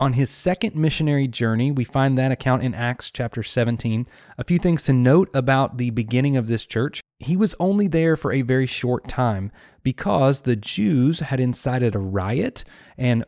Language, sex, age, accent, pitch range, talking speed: English, male, 30-49, American, 115-150 Hz, 185 wpm